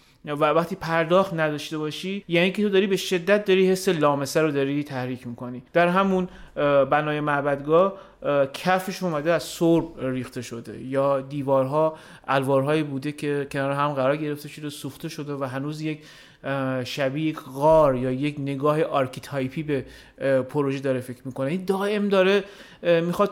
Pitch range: 140-185 Hz